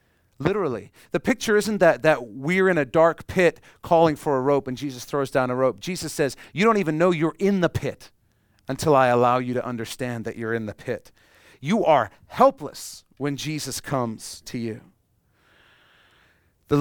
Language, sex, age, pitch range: English, male, 40-59, 105-150 Hz